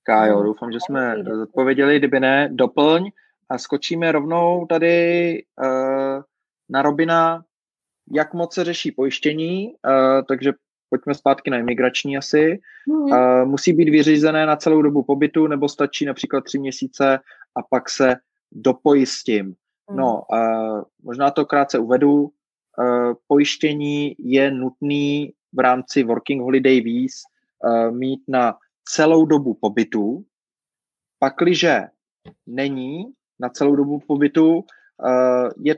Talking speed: 120 wpm